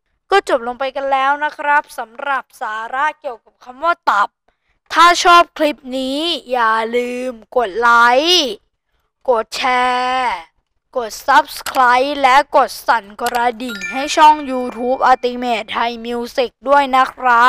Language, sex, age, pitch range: Thai, female, 20-39, 235-290 Hz